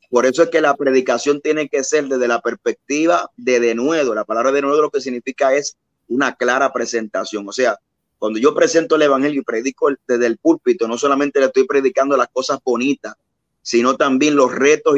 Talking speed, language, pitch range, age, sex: 200 wpm, English, 120-155 Hz, 30-49, male